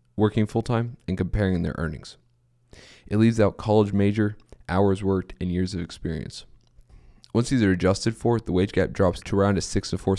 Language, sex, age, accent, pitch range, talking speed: English, male, 20-39, American, 90-110 Hz, 190 wpm